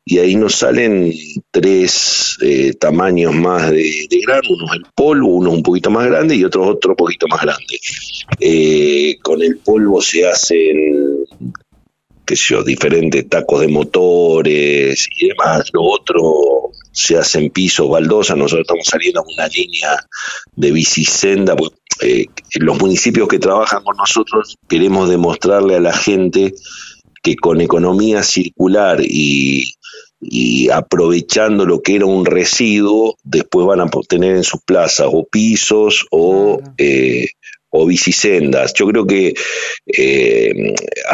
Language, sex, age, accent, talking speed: Spanish, male, 50-69, Argentinian, 140 wpm